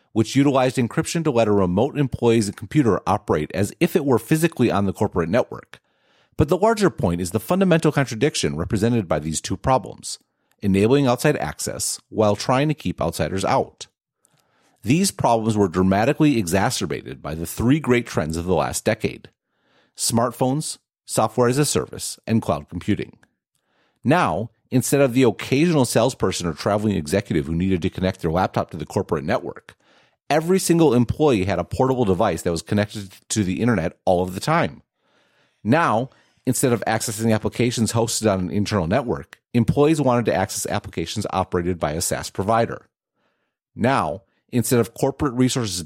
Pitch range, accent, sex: 95-135 Hz, American, male